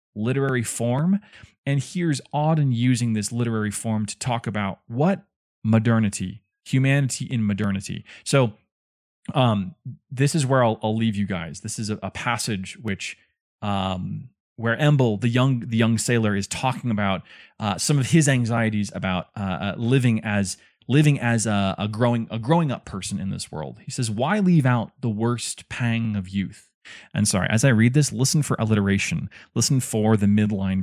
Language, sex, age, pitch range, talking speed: English, male, 20-39, 105-135 Hz, 175 wpm